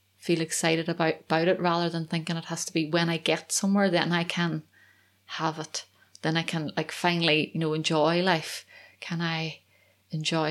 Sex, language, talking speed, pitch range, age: female, English, 190 wpm, 160-180 Hz, 20-39